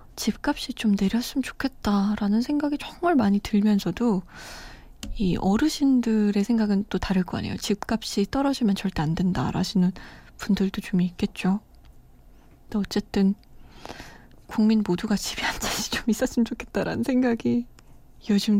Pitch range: 190-230 Hz